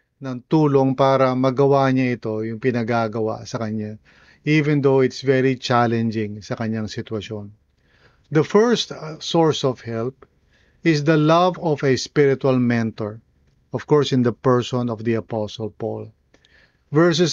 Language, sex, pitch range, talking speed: English, male, 120-150 Hz, 140 wpm